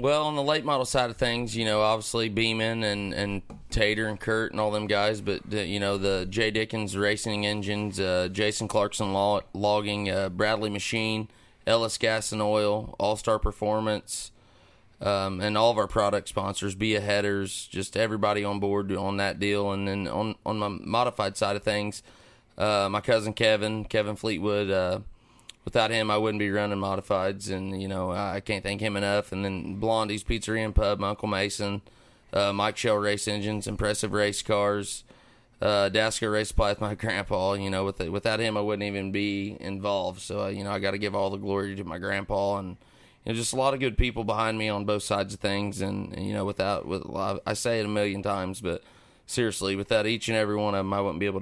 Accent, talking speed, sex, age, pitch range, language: American, 205 wpm, male, 30-49, 100-110 Hz, English